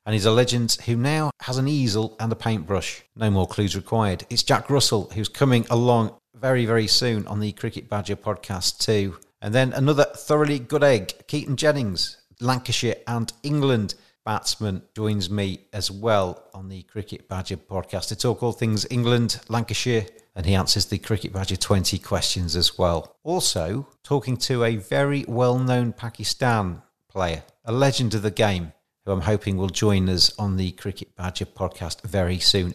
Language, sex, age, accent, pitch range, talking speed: English, male, 40-59, British, 100-125 Hz, 175 wpm